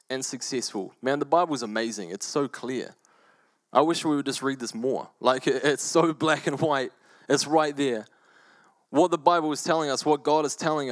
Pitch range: 130-160 Hz